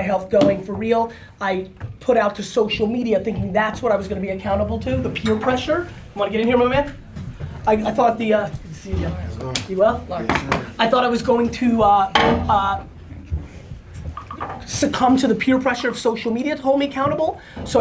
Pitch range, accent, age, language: 195-245 Hz, American, 20-39, English